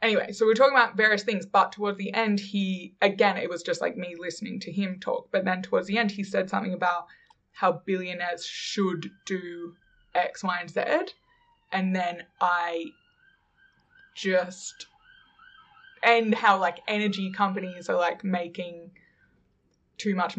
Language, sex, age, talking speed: English, female, 20-39, 155 wpm